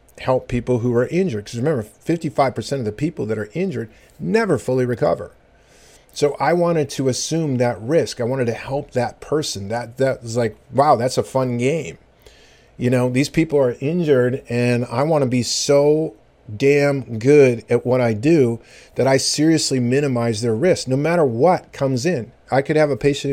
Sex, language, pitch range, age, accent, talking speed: male, English, 120-145 Hz, 40-59, American, 190 wpm